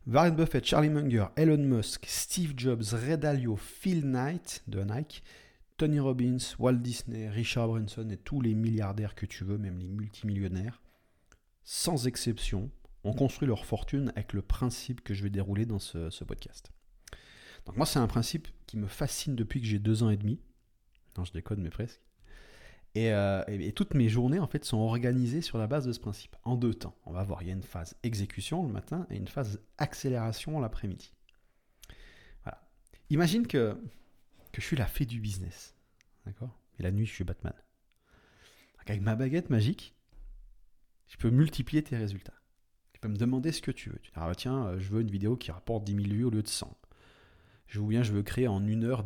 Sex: male